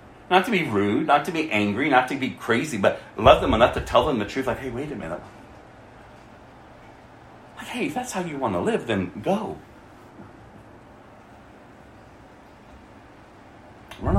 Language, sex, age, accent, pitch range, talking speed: English, male, 40-59, American, 95-130 Hz, 160 wpm